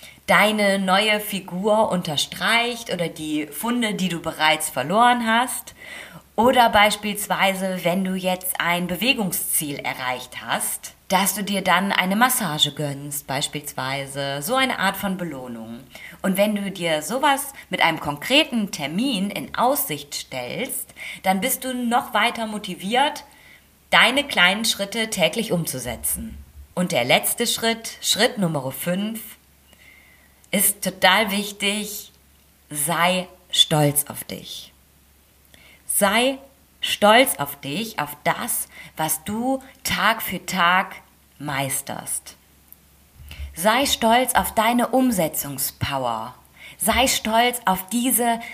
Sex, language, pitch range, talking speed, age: female, German, 145-230 Hz, 115 wpm, 30-49